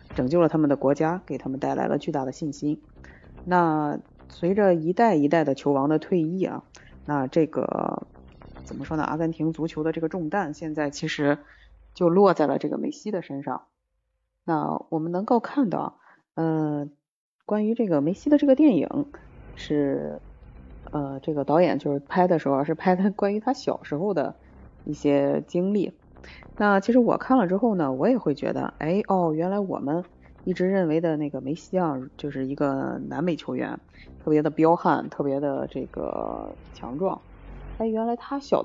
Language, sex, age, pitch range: Chinese, female, 20-39, 145-195 Hz